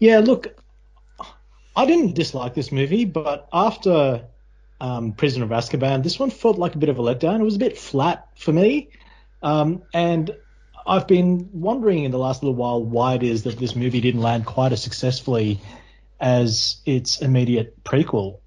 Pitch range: 115-150 Hz